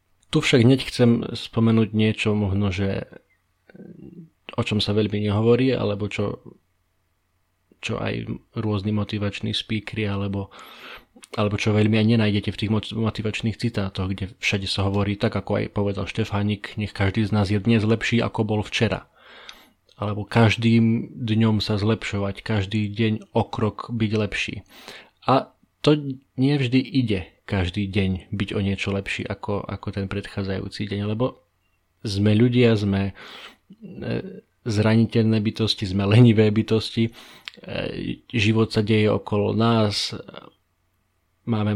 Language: Slovak